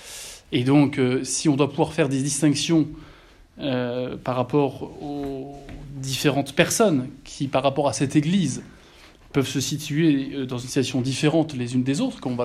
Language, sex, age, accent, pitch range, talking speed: French, male, 20-39, French, 130-155 Hz, 180 wpm